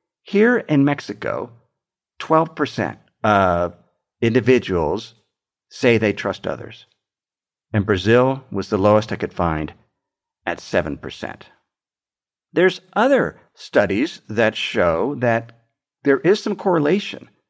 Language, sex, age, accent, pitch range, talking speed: English, male, 50-69, American, 110-160 Hz, 105 wpm